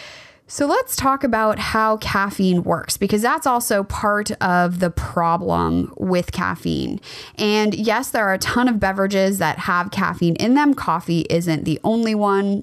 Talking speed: 160 wpm